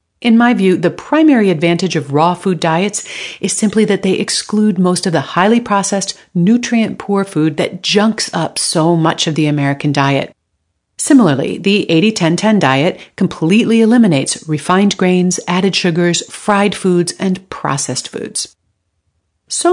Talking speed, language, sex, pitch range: 145 wpm, English, female, 165-215 Hz